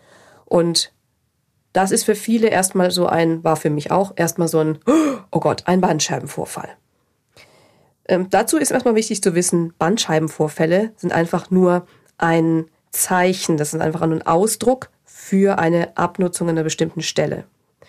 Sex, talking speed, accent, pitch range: female, 150 wpm, German, 165-220 Hz